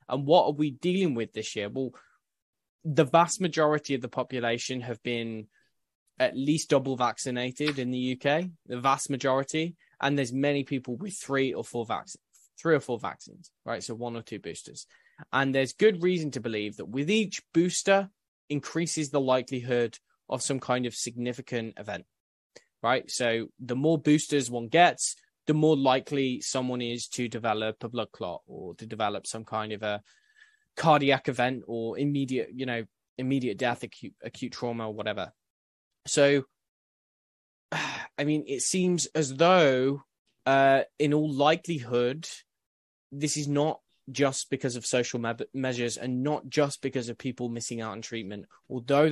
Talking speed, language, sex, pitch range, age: 160 wpm, English, male, 120-150 Hz, 10-29